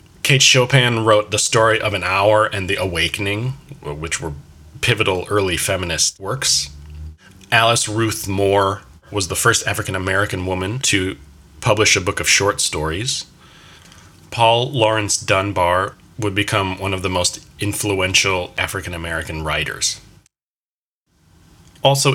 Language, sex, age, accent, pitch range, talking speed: English, male, 30-49, American, 95-120 Hz, 120 wpm